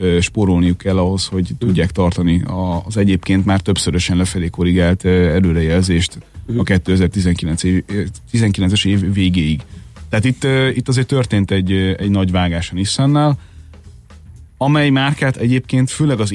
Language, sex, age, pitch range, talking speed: Hungarian, male, 30-49, 90-115 Hz, 115 wpm